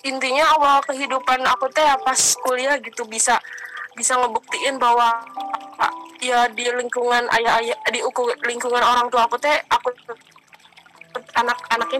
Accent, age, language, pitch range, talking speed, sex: native, 20-39, Indonesian, 215-270 Hz, 125 wpm, female